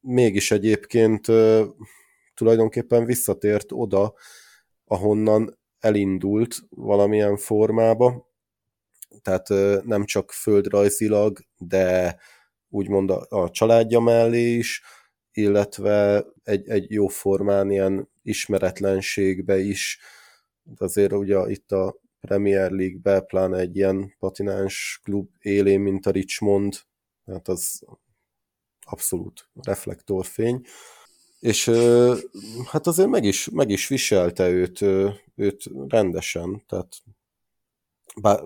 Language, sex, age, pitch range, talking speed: Hungarian, male, 20-39, 95-110 Hz, 95 wpm